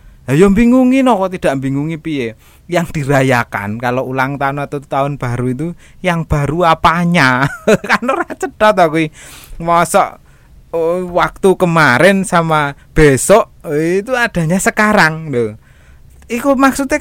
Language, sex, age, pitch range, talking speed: Indonesian, male, 20-39, 120-185 Hz, 115 wpm